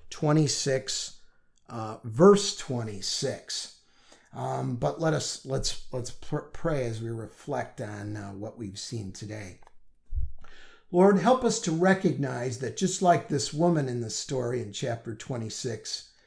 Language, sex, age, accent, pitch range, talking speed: English, male, 50-69, American, 115-155 Hz, 135 wpm